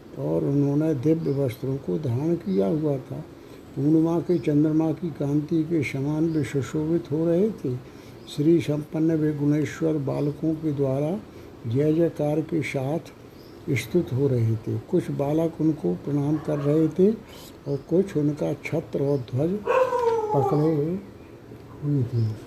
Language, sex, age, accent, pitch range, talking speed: Hindi, male, 60-79, native, 140-160 Hz, 140 wpm